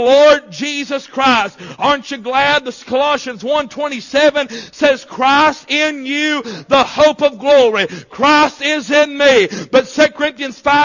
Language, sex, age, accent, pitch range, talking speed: English, male, 50-69, American, 235-295 Hz, 140 wpm